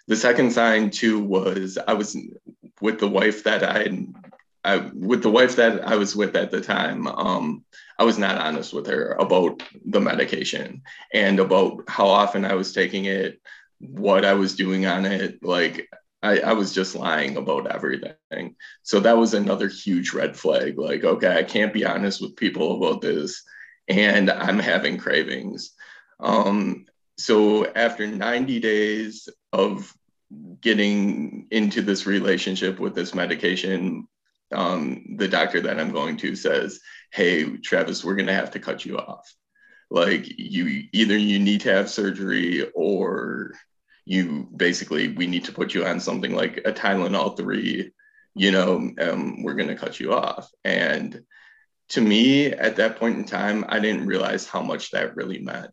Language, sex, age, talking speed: English, male, 20-39, 165 wpm